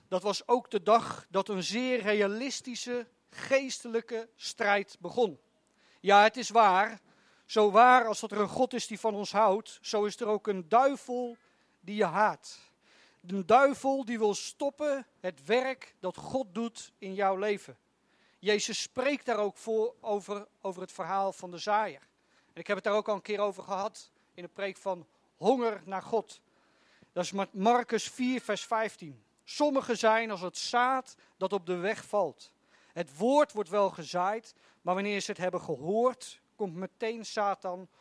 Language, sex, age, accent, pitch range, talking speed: Dutch, male, 40-59, Dutch, 195-230 Hz, 175 wpm